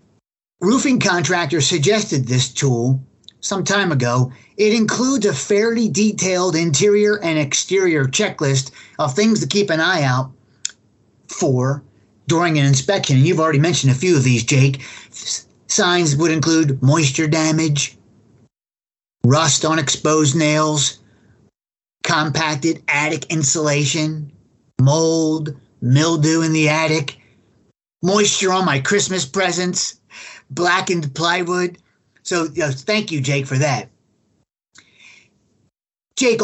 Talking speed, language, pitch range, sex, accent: 110 wpm, English, 135-180 Hz, male, American